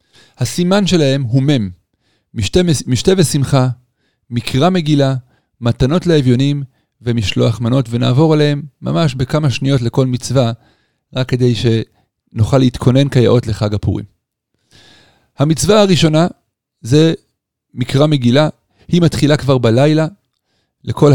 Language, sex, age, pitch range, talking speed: Hebrew, male, 40-59, 120-150 Hz, 100 wpm